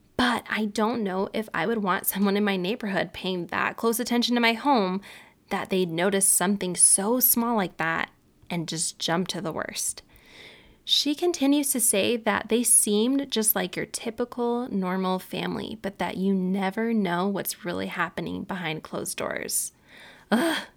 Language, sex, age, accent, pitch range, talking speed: English, female, 20-39, American, 185-225 Hz, 170 wpm